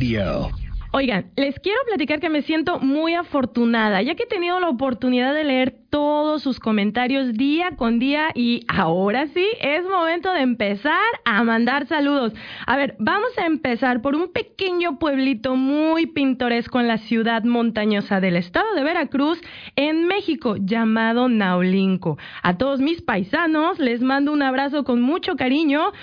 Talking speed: 155 wpm